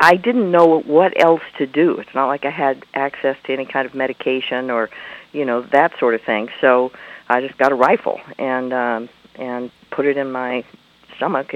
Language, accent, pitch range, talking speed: English, American, 115-140 Hz, 200 wpm